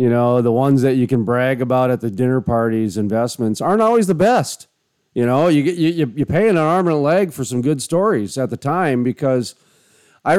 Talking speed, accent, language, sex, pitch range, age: 225 wpm, American, English, male, 115-150 Hz, 40-59